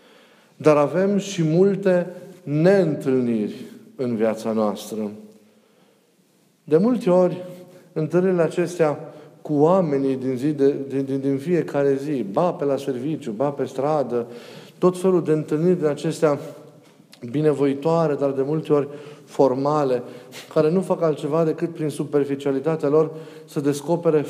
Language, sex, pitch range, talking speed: Romanian, male, 135-165 Hz, 130 wpm